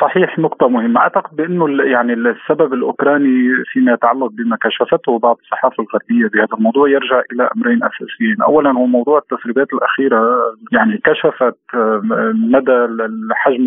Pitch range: 120-185 Hz